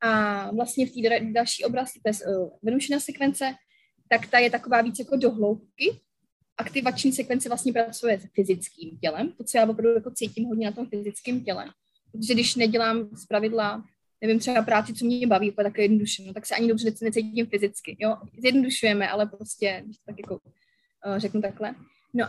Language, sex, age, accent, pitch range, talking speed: Czech, female, 20-39, native, 215-245 Hz, 165 wpm